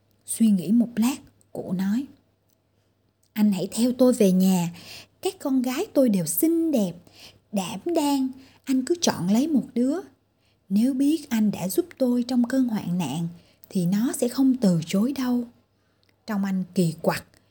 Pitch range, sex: 200-285 Hz, female